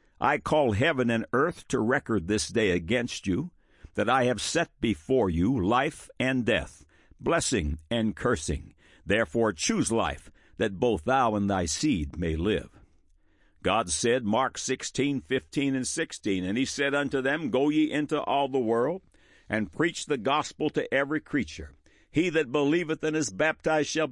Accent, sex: American, male